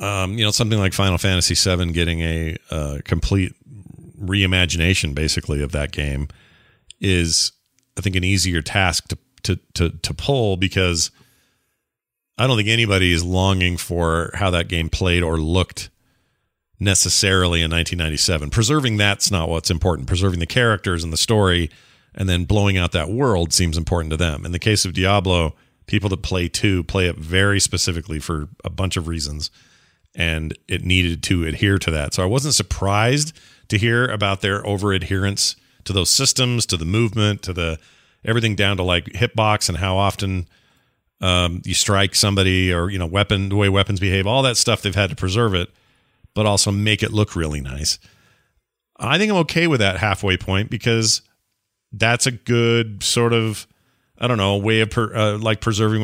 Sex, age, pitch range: male, 40-59, 90-110 Hz